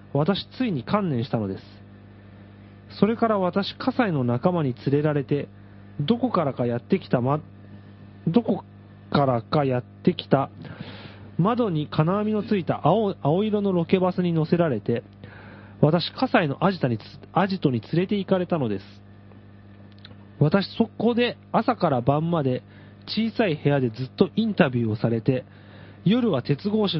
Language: Japanese